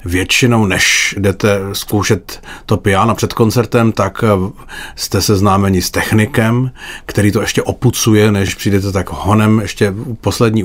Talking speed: 130 wpm